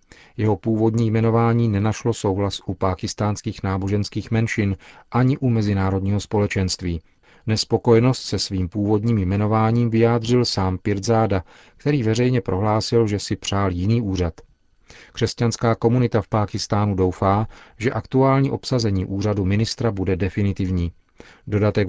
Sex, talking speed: male, 115 wpm